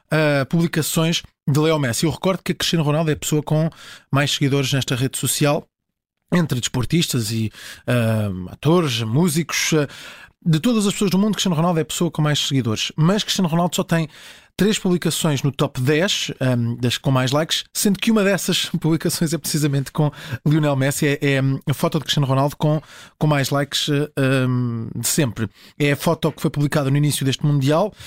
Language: Portuguese